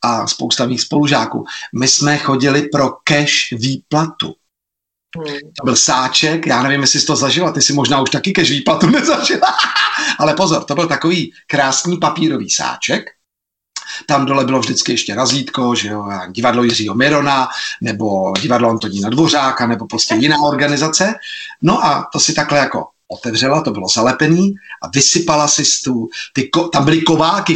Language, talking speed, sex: Czech, 155 wpm, male